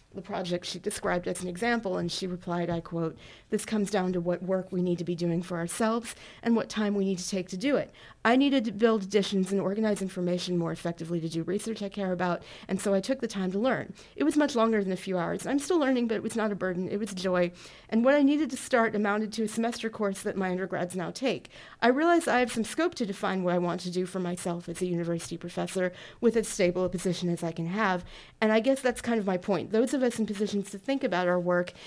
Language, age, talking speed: English, 40-59, 265 wpm